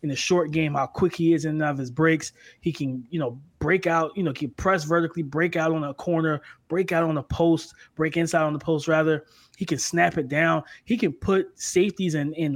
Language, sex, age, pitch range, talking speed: English, male, 20-39, 160-190 Hz, 255 wpm